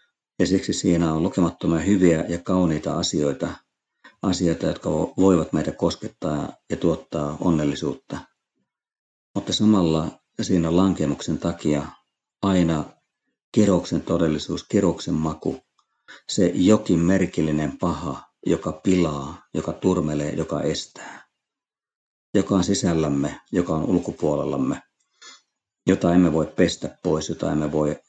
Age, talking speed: 50-69, 110 wpm